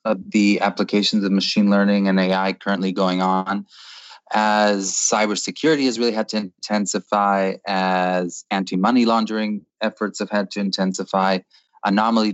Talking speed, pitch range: 135 wpm, 95-110 Hz